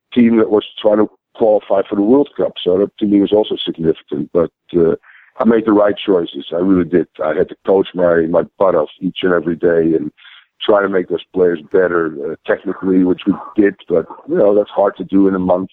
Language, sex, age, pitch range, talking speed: English, male, 50-69, 95-110 Hz, 235 wpm